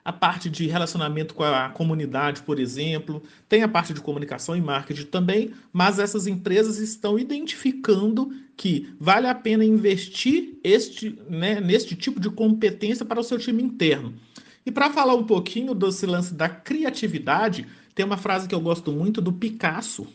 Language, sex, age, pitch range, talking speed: Portuguese, male, 40-59, 180-235 Hz, 165 wpm